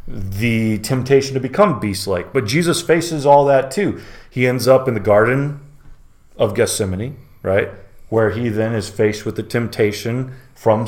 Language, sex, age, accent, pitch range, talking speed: English, male, 30-49, American, 95-115 Hz, 160 wpm